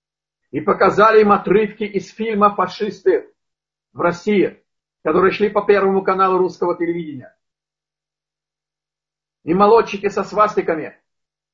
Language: Russian